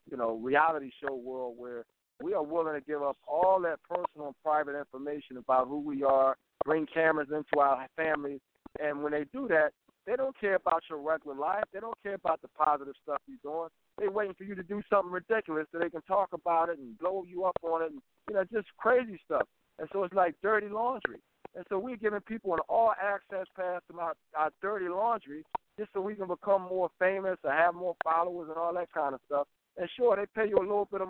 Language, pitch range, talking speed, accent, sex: English, 155-205 Hz, 230 wpm, American, male